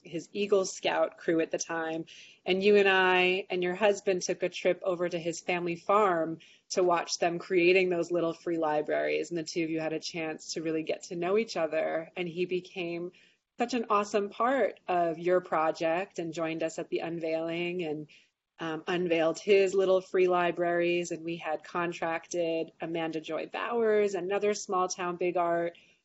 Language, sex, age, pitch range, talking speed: English, female, 30-49, 165-190 Hz, 185 wpm